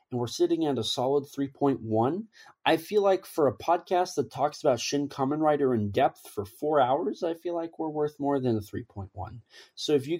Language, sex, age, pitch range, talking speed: English, male, 30-49, 120-180 Hz, 210 wpm